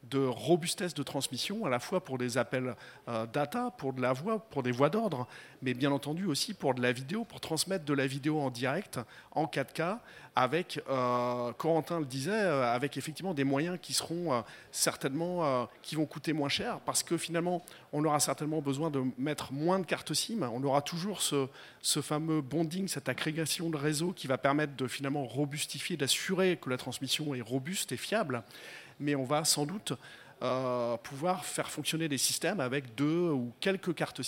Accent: French